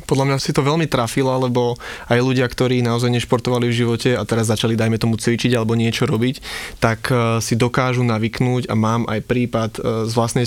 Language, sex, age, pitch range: Slovak, male, 20-39, 115-125 Hz